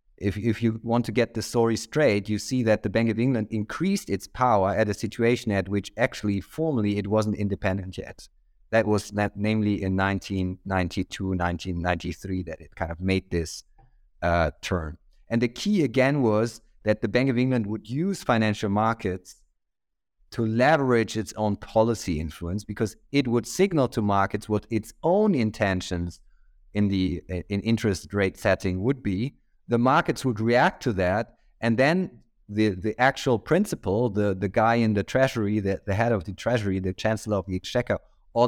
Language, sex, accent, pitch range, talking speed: English, male, German, 100-120 Hz, 175 wpm